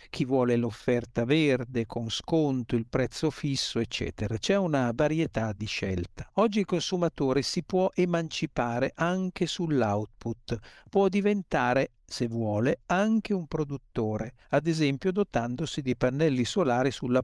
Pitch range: 120-165 Hz